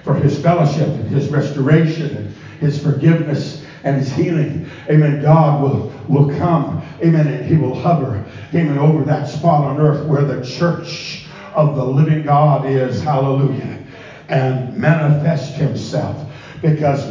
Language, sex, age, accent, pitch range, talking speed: English, male, 60-79, American, 140-160 Hz, 145 wpm